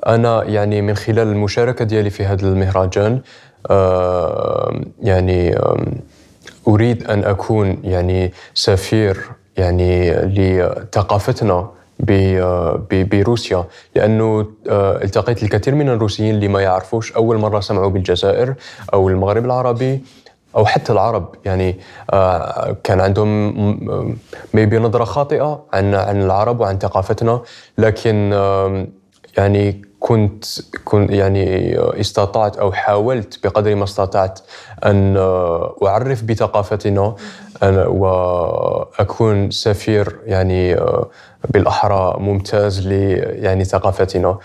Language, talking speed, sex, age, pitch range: Arabic, 100 wpm, male, 20-39, 95-110 Hz